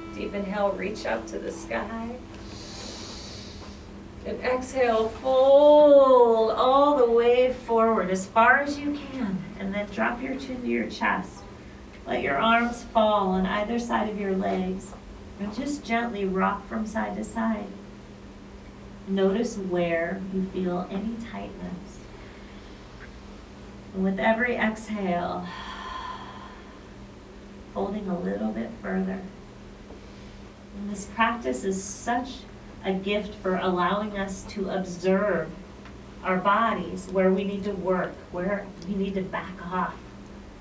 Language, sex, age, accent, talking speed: English, female, 40-59, American, 125 wpm